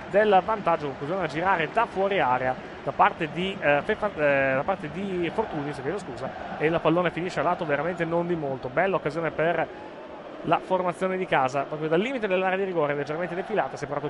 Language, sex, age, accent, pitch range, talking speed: Italian, male, 30-49, native, 150-195 Hz, 190 wpm